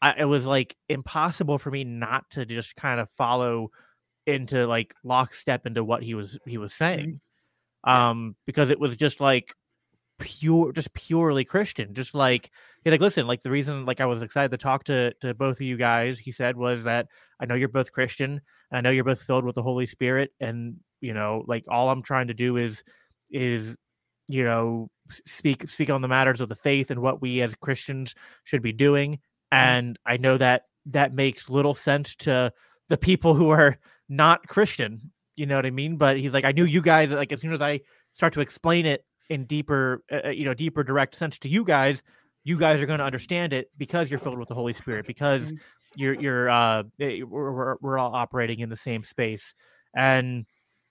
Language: English